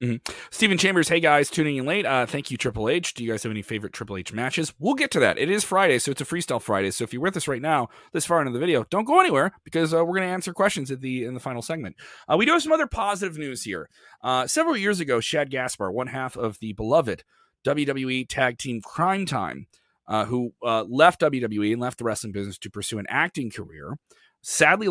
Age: 30-49